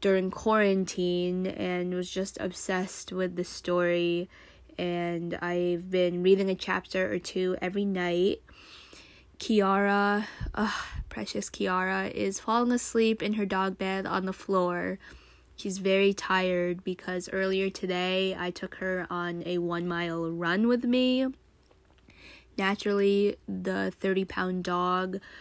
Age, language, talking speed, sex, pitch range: 10-29, English, 125 wpm, female, 180-210 Hz